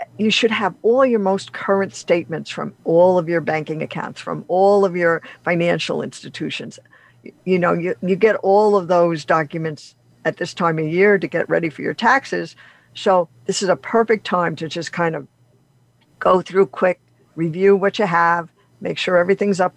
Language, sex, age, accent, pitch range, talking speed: English, female, 50-69, American, 165-200 Hz, 185 wpm